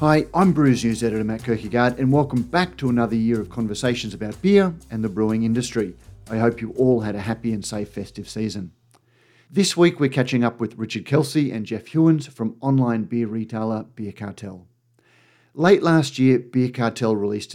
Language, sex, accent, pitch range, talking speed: English, male, Australian, 110-130 Hz, 190 wpm